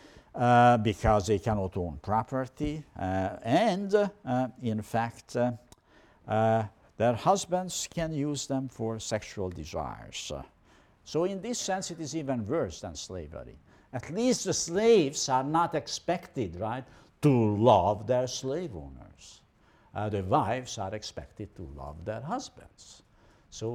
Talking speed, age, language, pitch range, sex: 135 wpm, 60-79, English, 95-145 Hz, male